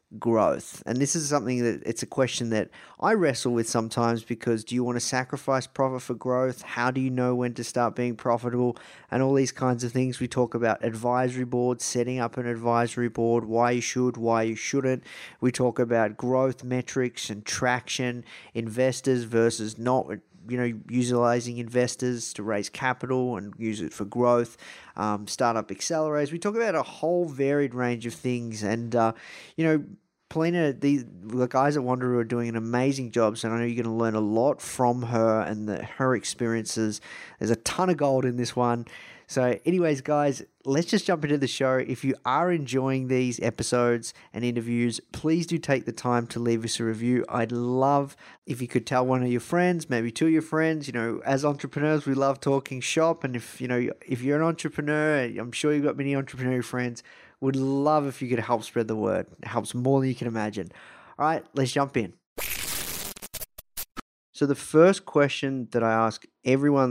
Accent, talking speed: Australian, 195 wpm